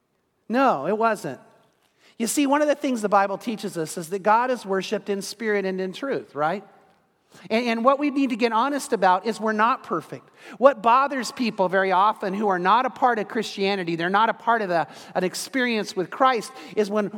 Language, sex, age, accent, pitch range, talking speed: English, male, 40-59, American, 185-255 Hz, 210 wpm